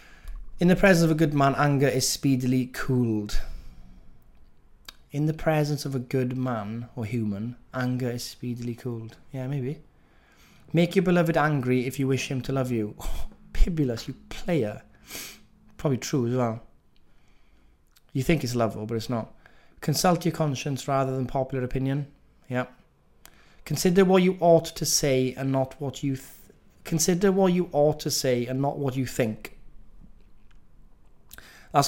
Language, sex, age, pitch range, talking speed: English, male, 20-39, 115-140 Hz, 155 wpm